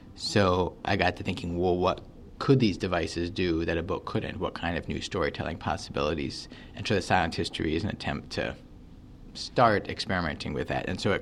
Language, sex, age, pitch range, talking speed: English, male, 30-49, 85-105 Hz, 200 wpm